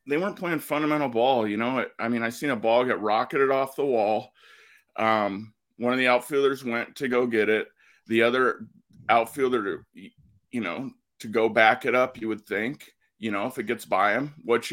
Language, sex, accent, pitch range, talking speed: English, male, American, 110-130 Hz, 200 wpm